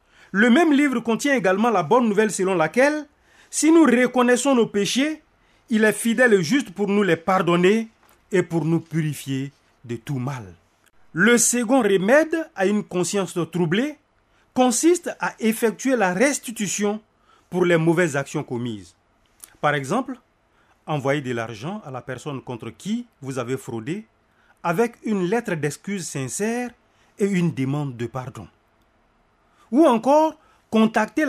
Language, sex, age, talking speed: French, male, 40-59, 140 wpm